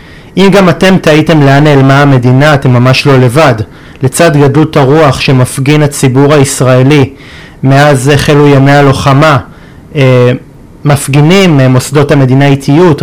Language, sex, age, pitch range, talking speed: Hebrew, male, 30-49, 135-155 Hz, 115 wpm